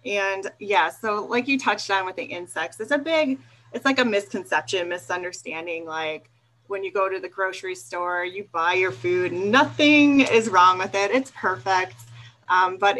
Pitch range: 155-205 Hz